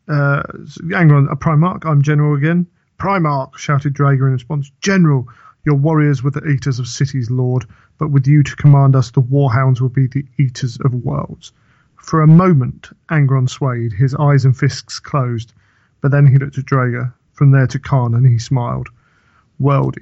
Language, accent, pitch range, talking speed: English, British, 125-140 Hz, 185 wpm